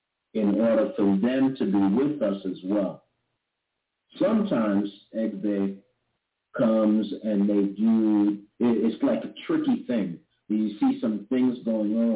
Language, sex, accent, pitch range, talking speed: English, male, American, 100-135 Hz, 135 wpm